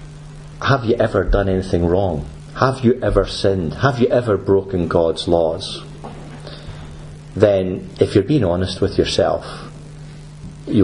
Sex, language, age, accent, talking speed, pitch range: male, English, 50-69, British, 135 wpm, 100-150 Hz